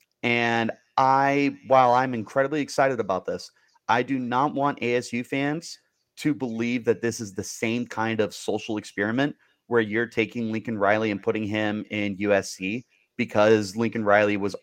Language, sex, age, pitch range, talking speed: English, male, 30-49, 105-135 Hz, 160 wpm